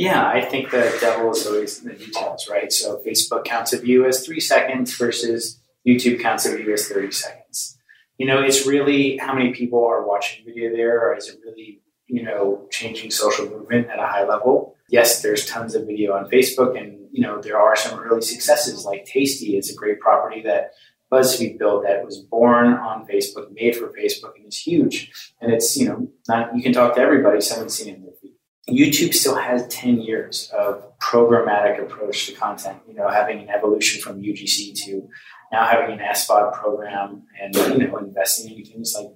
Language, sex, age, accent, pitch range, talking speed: English, male, 30-49, American, 105-140 Hz, 200 wpm